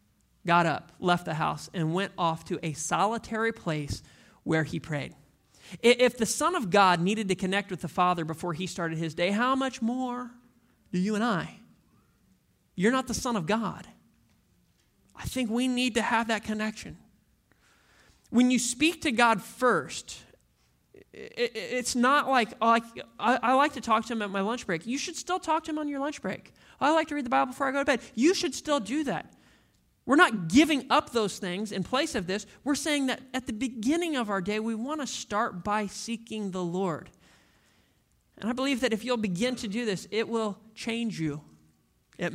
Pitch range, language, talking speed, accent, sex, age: 185-255 Hz, English, 200 wpm, American, male, 30-49